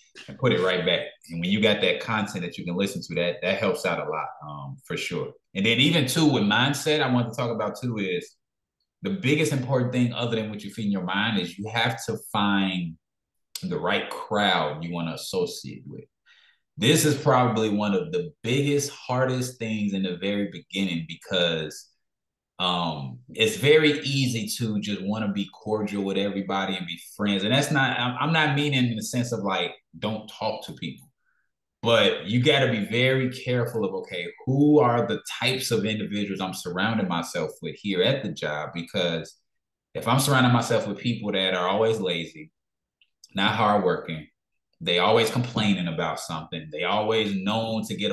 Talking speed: 190 wpm